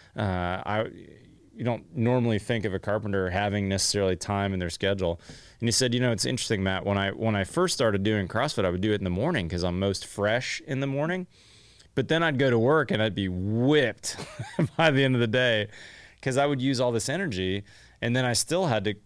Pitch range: 95-120 Hz